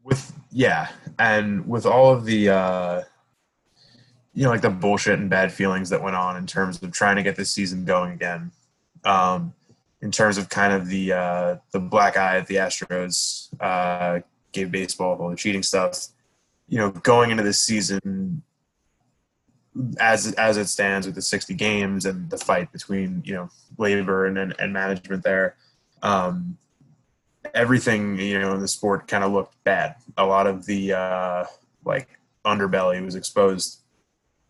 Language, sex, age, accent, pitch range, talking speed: English, male, 20-39, American, 95-110 Hz, 170 wpm